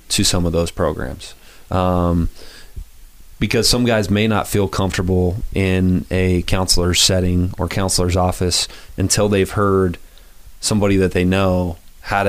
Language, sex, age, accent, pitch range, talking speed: English, male, 30-49, American, 90-100 Hz, 135 wpm